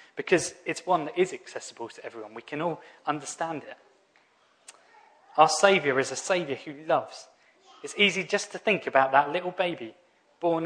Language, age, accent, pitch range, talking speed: English, 20-39, British, 135-180 Hz, 170 wpm